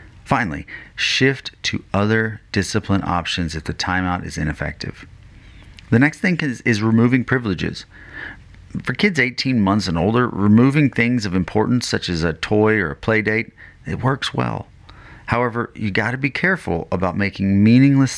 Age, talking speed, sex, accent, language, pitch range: 30-49, 160 wpm, male, American, English, 95-125 Hz